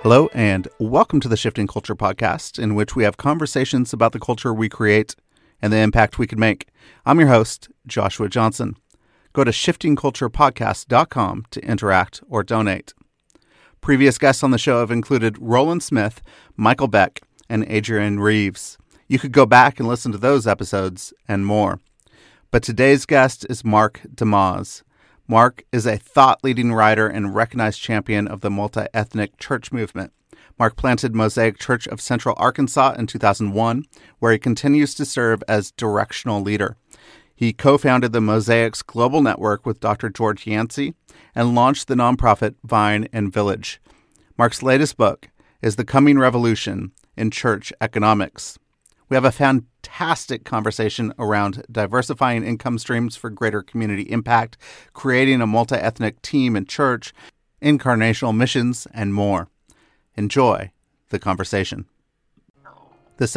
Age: 40-59